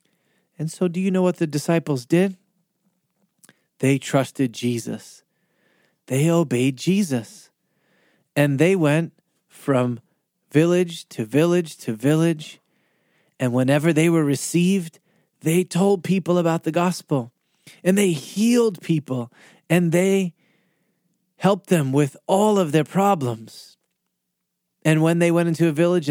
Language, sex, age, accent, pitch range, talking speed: English, male, 30-49, American, 135-180 Hz, 125 wpm